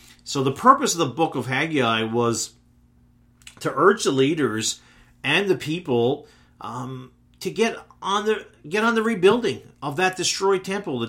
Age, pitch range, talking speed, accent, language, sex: 40-59, 110-150 Hz, 160 wpm, American, English, male